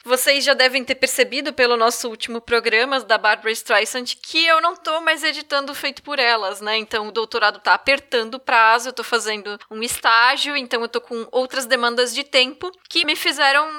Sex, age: female, 10-29